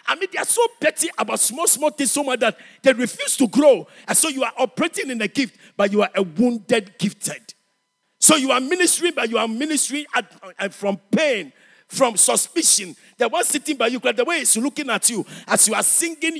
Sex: male